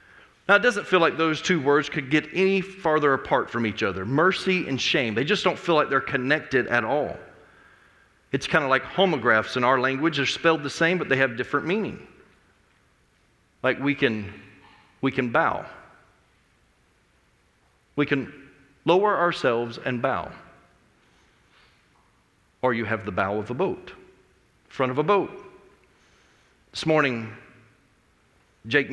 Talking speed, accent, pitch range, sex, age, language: 150 wpm, American, 110-150 Hz, male, 40-59, English